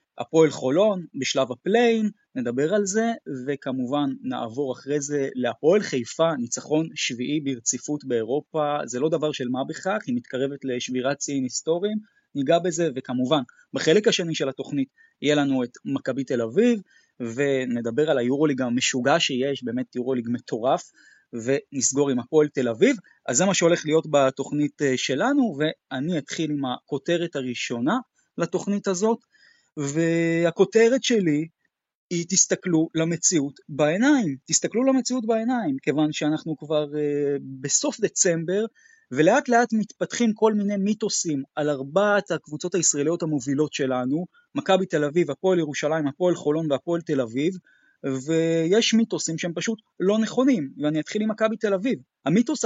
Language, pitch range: Hebrew, 140-205 Hz